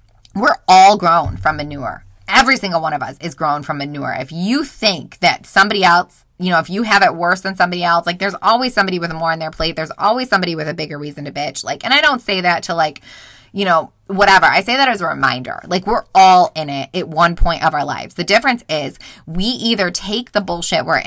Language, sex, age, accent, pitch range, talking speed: English, female, 20-39, American, 160-220 Hz, 245 wpm